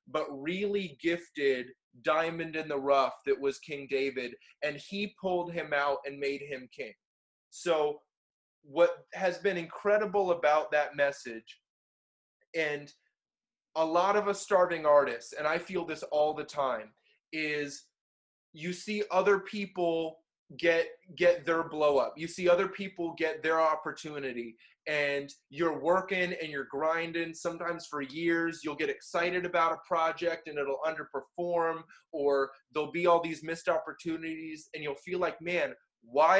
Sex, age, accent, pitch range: male, 20-39, American, 145-175 Hz